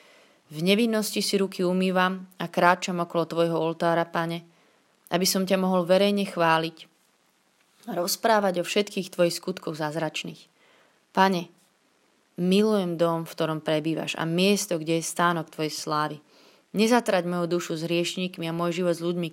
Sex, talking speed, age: female, 145 wpm, 30-49